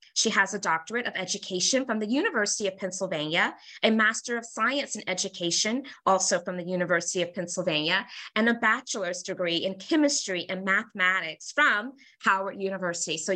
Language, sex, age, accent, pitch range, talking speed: English, female, 20-39, American, 190-250 Hz, 155 wpm